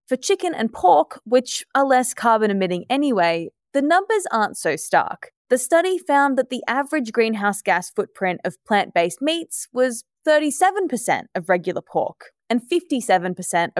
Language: English